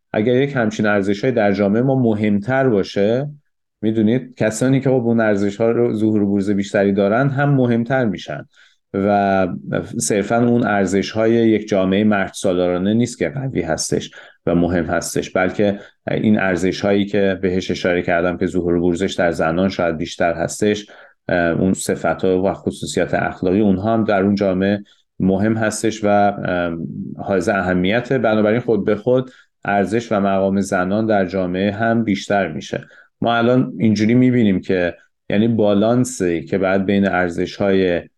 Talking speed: 150 wpm